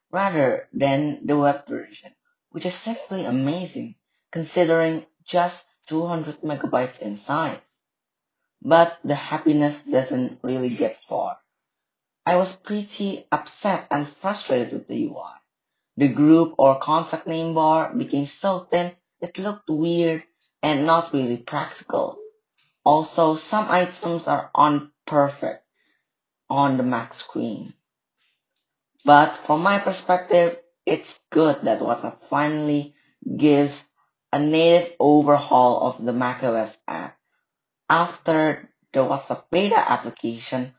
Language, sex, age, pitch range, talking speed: English, female, 20-39, 140-175 Hz, 115 wpm